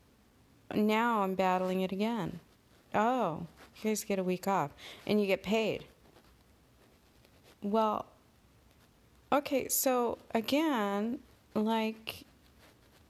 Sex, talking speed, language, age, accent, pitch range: female, 95 wpm, English, 30-49, American, 170-215 Hz